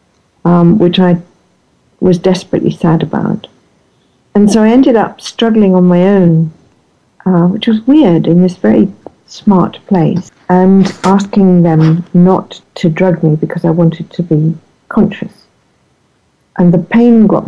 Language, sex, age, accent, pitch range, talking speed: English, female, 60-79, British, 165-185 Hz, 145 wpm